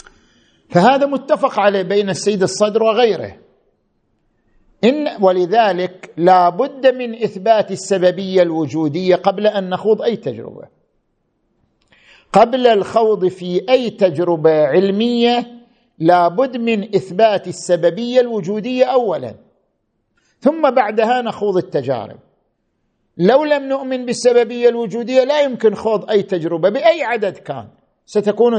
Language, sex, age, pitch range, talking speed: Arabic, male, 50-69, 175-235 Hz, 105 wpm